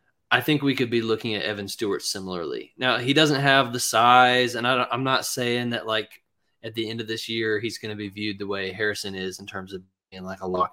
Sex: male